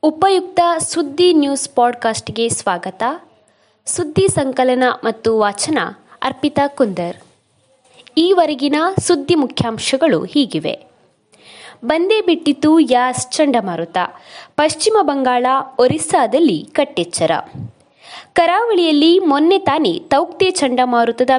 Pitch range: 245-330 Hz